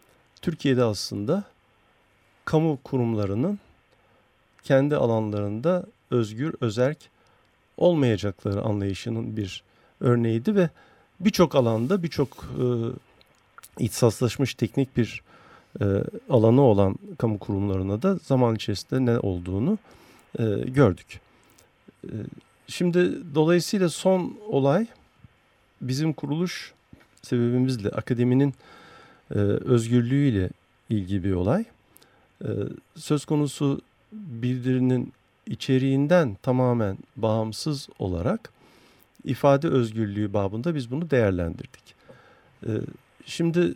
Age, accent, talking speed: 50-69, native, 80 wpm